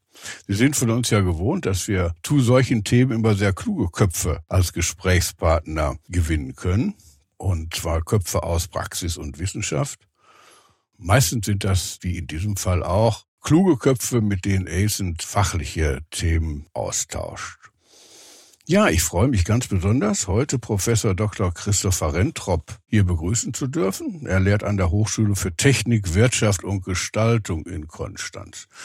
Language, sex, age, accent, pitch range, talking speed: German, male, 60-79, German, 90-115 Hz, 145 wpm